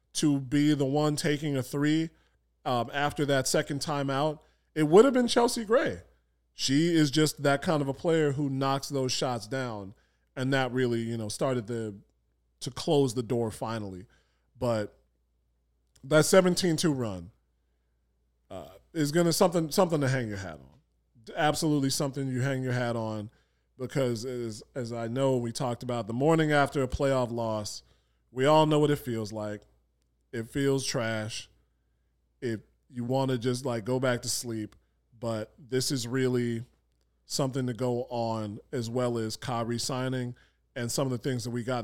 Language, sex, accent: English, male, American